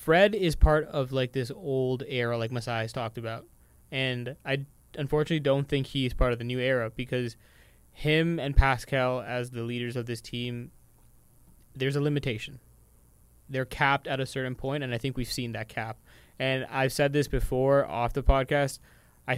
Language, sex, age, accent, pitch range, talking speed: English, male, 20-39, American, 120-140 Hz, 185 wpm